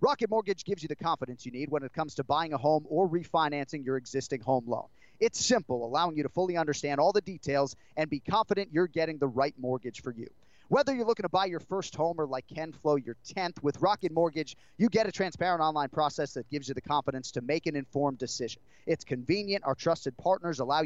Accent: American